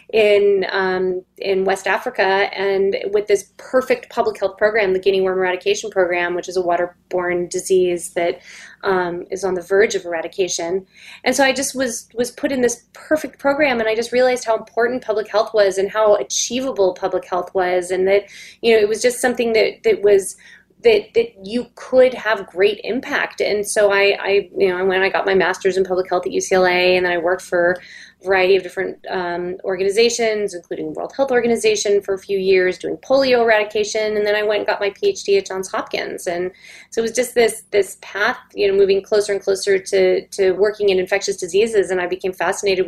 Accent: American